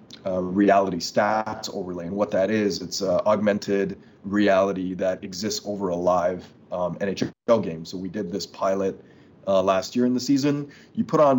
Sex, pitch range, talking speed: male, 100-125 Hz, 180 wpm